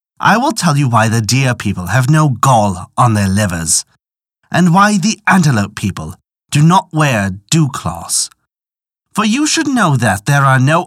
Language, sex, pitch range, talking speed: English, male, 105-170 Hz, 170 wpm